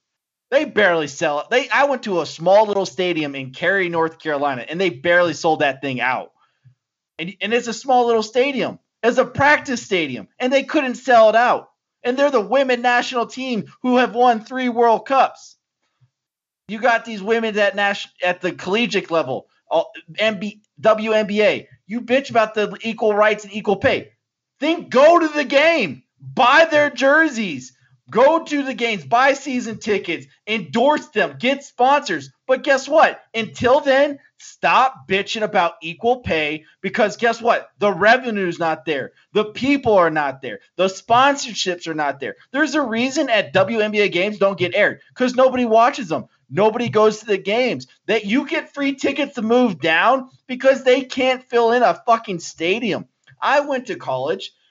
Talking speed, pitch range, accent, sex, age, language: 170 wpm, 185-260 Hz, American, male, 30-49, English